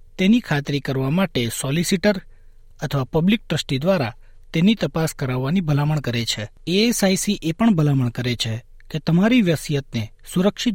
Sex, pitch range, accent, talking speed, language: male, 125-175 Hz, native, 140 wpm, Gujarati